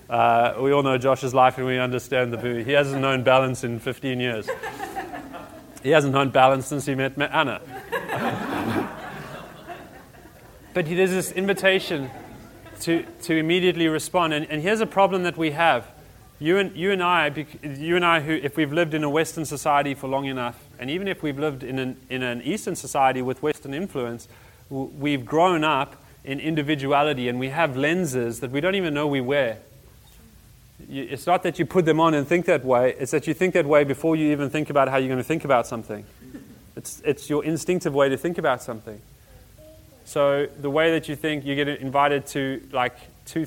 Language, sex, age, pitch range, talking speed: English, male, 30-49, 130-160 Hz, 195 wpm